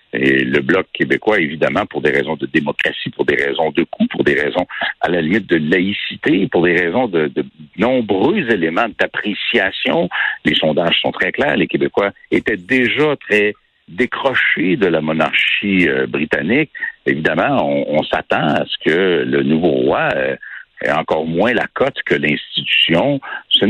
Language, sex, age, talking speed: French, male, 60-79, 165 wpm